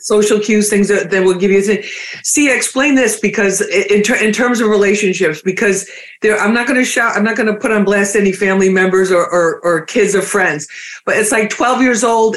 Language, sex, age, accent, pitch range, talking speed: English, female, 50-69, American, 190-225 Hz, 230 wpm